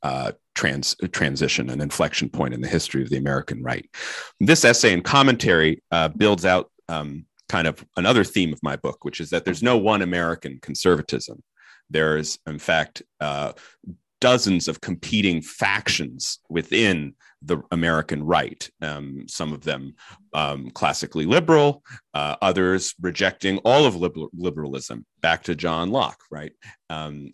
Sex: male